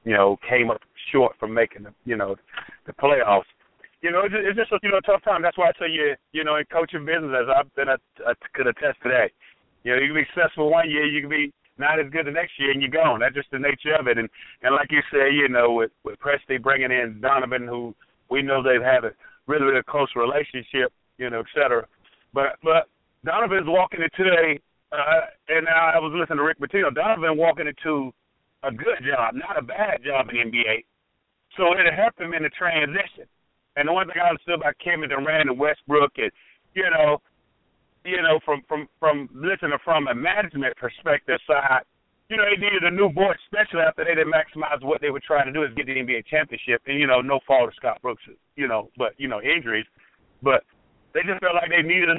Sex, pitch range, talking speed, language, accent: male, 135-170 Hz, 225 wpm, English, American